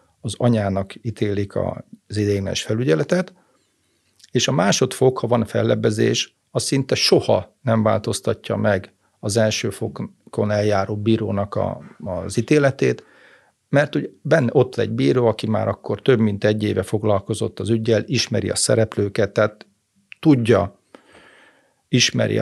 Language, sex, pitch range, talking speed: Hungarian, male, 105-120 Hz, 130 wpm